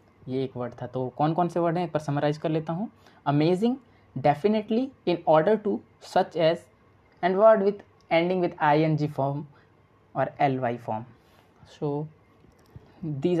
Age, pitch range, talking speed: 20-39, 135-170 Hz, 170 wpm